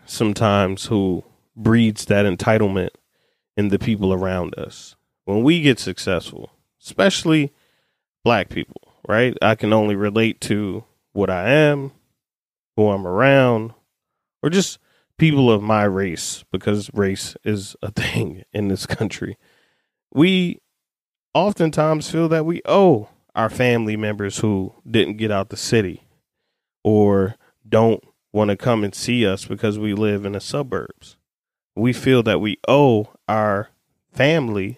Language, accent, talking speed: English, American, 135 wpm